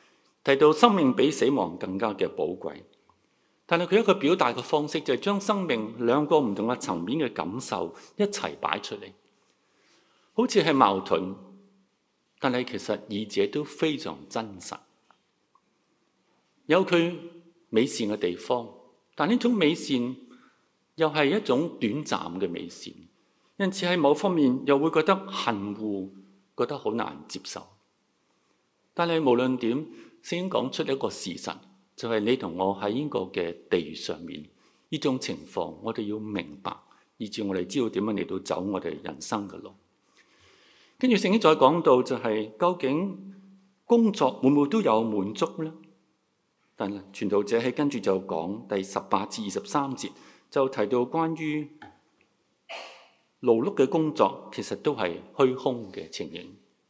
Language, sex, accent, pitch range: Chinese, male, native, 110-175 Hz